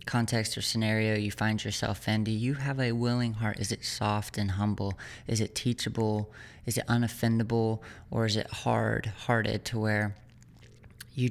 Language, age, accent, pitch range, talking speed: English, 20-39, American, 110-125 Hz, 170 wpm